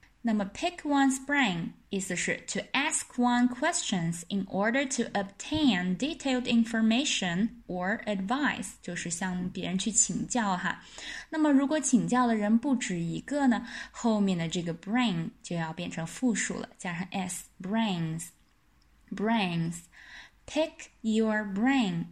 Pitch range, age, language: 180-250 Hz, 10-29, Chinese